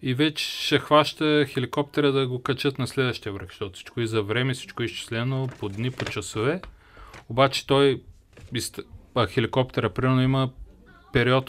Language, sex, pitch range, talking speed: Bulgarian, male, 100-125 Hz, 145 wpm